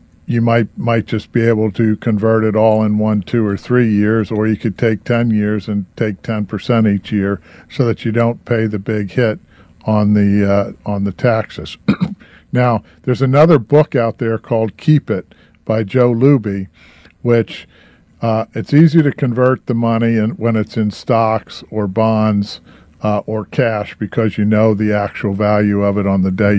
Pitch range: 100-115 Hz